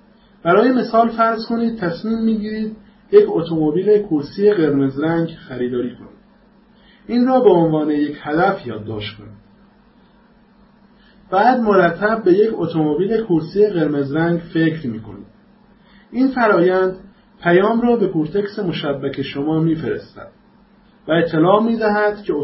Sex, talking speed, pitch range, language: male, 120 wpm, 160-215 Hz, English